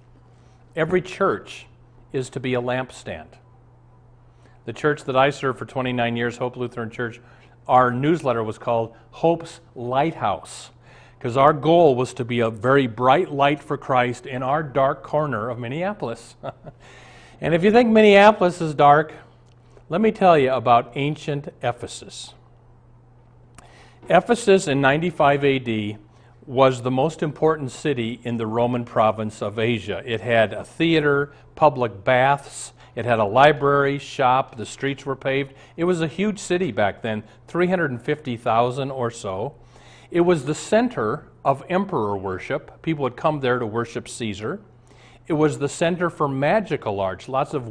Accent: American